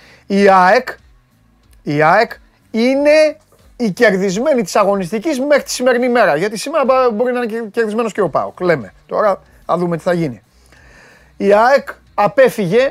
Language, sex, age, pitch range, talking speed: Greek, male, 30-49, 175-235 Hz, 145 wpm